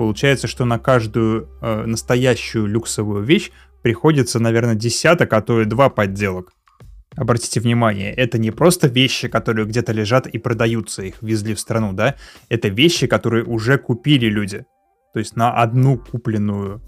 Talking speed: 155 wpm